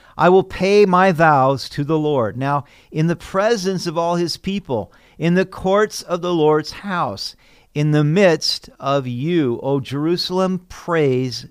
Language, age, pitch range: English, 50-69, 130-185 Hz